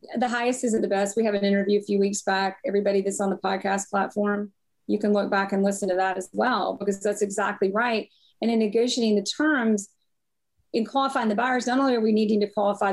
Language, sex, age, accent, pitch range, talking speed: English, female, 30-49, American, 195-230 Hz, 225 wpm